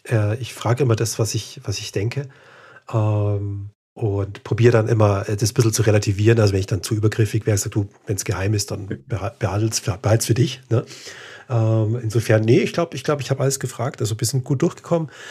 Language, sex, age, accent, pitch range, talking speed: German, male, 40-59, German, 110-125 Hz, 205 wpm